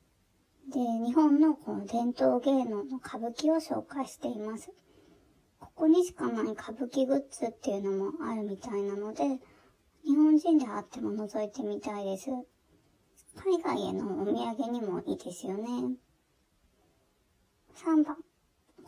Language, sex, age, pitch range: Japanese, male, 20-39, 220-300 Hz